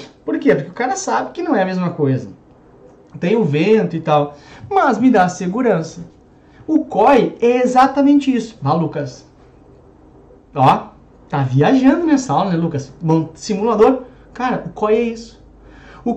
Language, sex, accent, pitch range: Portuguese, male, Brazilian, 160-260 Hz